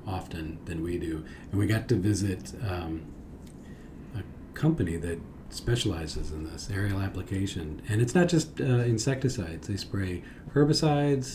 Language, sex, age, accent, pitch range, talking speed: English, male, 40-59, American, 95-125 Hz, 145 wpm